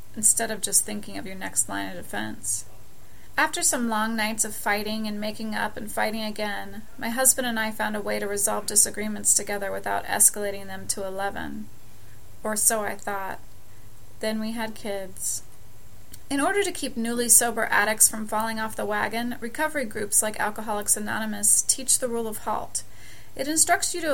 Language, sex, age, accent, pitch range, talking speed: English, female, 30-49, American, 195-240 Hz, 180 wpm